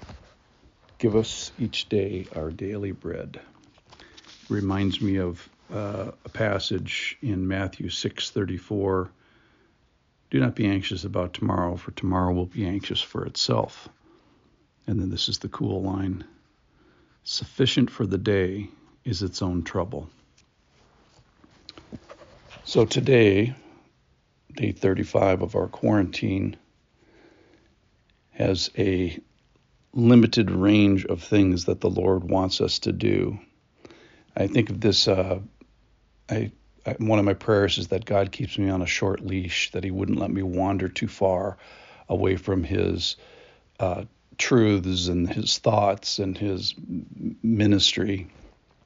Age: 60-79